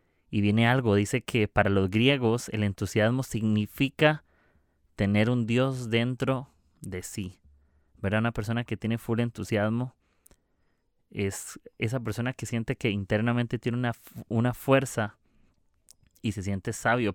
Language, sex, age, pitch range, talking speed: Spanish, male, 30-49, 100-120 Hz, 135 wpm